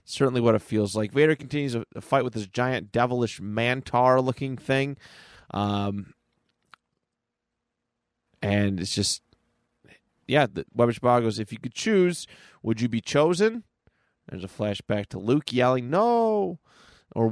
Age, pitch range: 30-49, 105-135 Hz